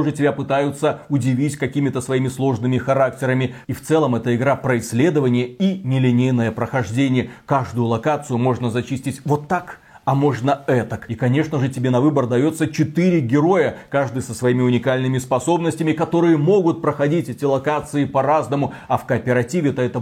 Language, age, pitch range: Russian, 30-49, 130-165 Hz